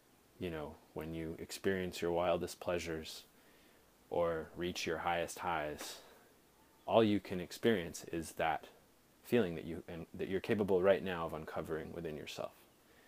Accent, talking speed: American, 145 wpm